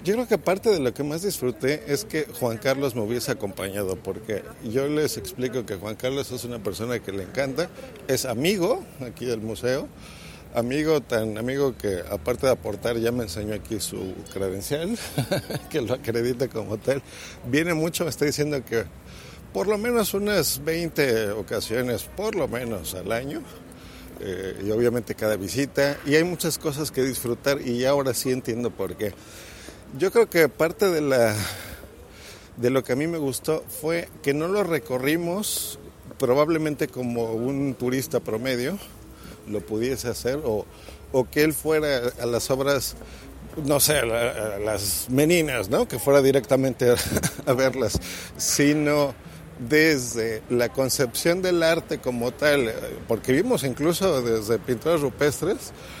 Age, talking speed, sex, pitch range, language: 50-69, 155 wpm, male, 115-150 Hz, Spanish